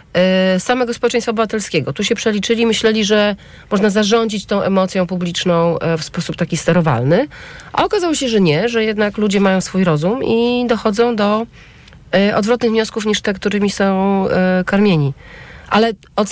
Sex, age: female, 40-59